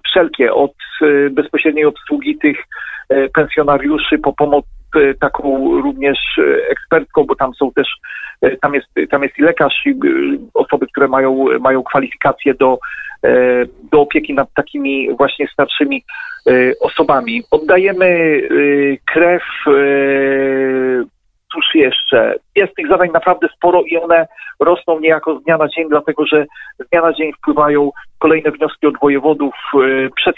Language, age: Polish, 40-59